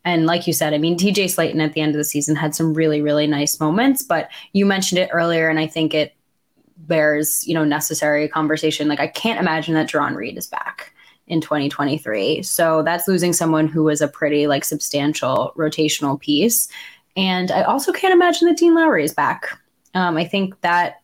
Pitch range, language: 155-185 Hz, English